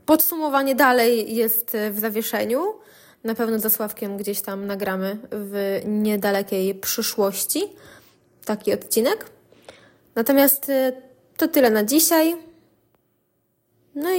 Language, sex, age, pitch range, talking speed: Polish, female, 20-39, 210-255 Hz, 95 wpm